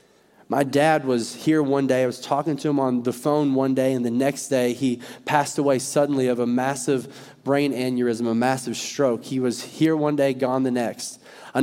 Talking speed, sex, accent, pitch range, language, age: 210 wpm, male, American, 130-150 Hz, English, 20-39